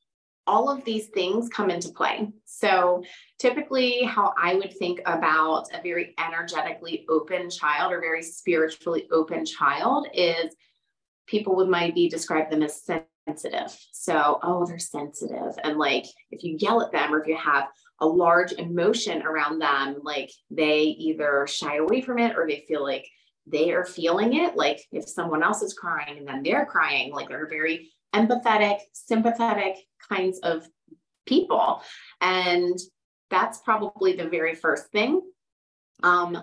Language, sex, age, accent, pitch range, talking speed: English, female, 30-49, American, 160-210 Hz, 155 wpm